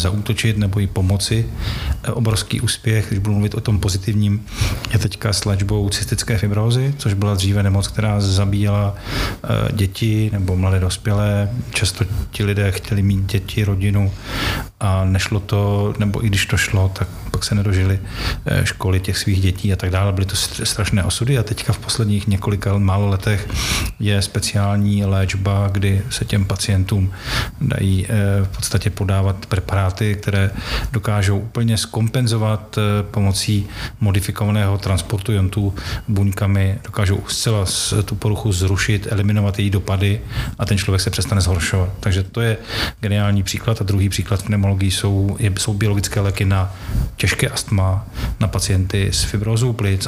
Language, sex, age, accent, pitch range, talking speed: Czech, male, 40-59, native, 95-110 Hz, 145 wpm